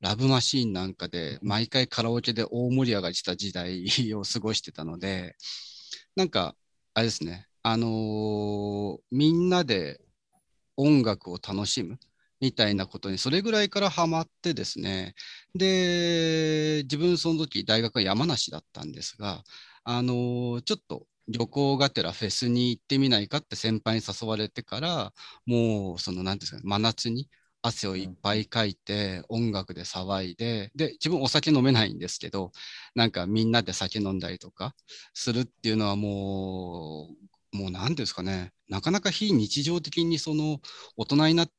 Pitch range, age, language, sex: 95-130 Hz, 40-59, Japanese, male